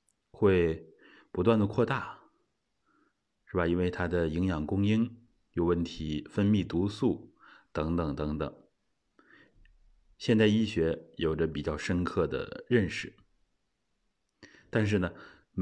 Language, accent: Chinese, native